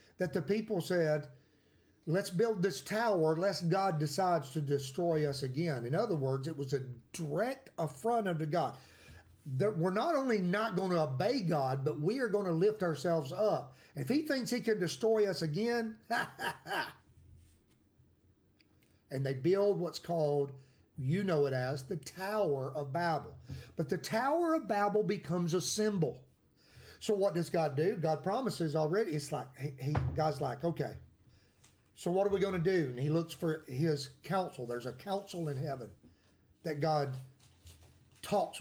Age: 40-59